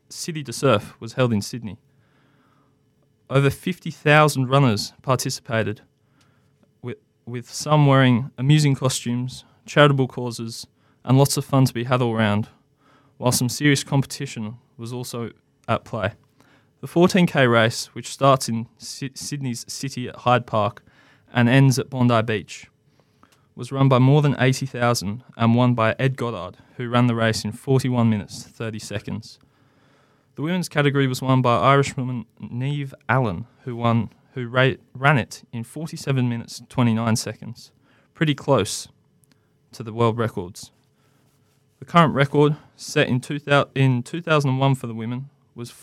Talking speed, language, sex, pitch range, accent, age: 145 wpm, English, male, 115-140 Hz, Australian, 20-39